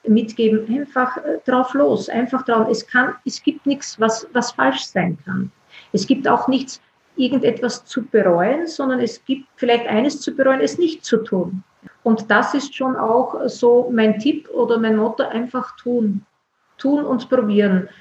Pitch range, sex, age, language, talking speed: 205-255 Hz, female, 40-59, German, 165 wpm